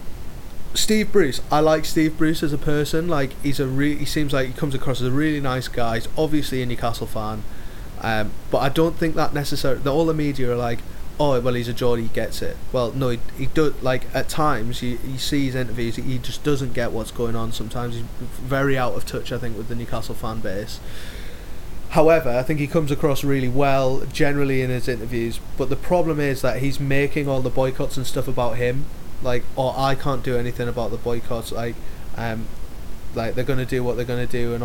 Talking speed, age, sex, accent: 225 wpm, 30-49, male, British